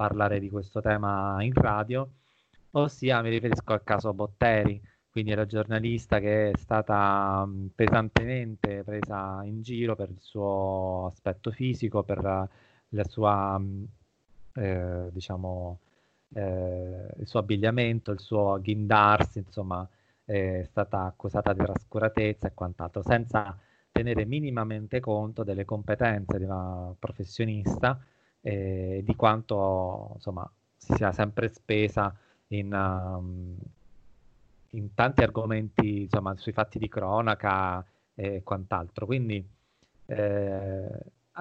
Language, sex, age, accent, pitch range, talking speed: Italian, male, 20-39, native, 100-115 Hz, 110 wpm